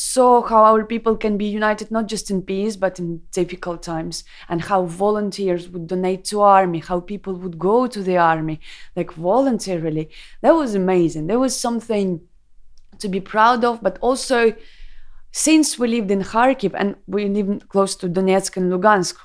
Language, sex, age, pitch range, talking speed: French, female, 20-39, 175-215 Hz, 175 wpm